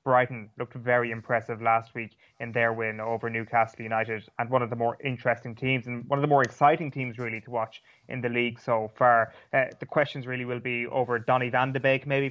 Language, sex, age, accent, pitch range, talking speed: English, male, 20-39, Irish, 120-140 Hz, 225 wpm